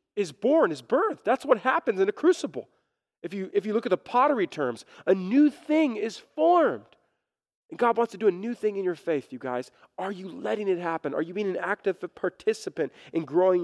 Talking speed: 220 wpm